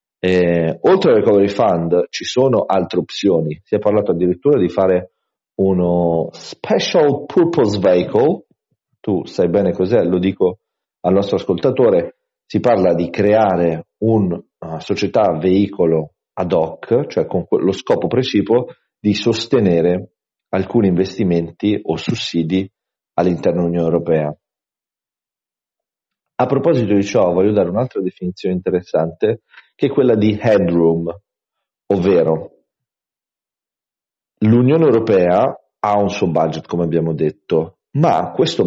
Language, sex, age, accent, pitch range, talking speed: Italian, male, 40-59, native, 85-105 Hz, 120 wpm